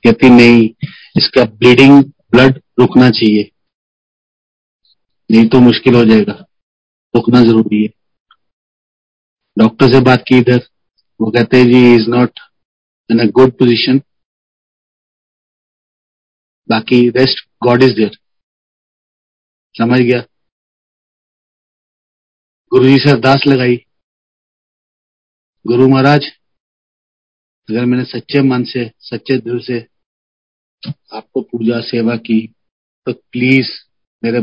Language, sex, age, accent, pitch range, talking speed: Hindi, male, 40-59, native, 110-130 Hz, 100 wpm